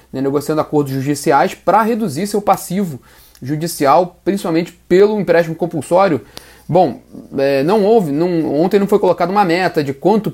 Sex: male